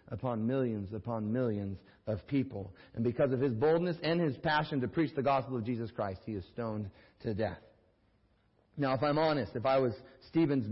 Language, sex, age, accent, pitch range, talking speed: English, male, 40-59, American, 100-130 Hz, 190 wpm